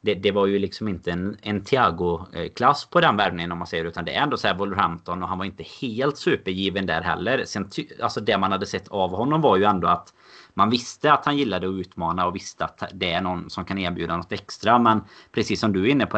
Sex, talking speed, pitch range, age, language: male, 250 wpm, 90-115 Hz, 30-49, Swedish